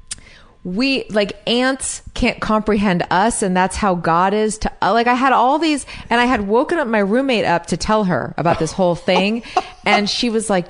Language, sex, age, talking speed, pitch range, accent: English, female, 30-49, 210 wpm, 180-255 Hz, American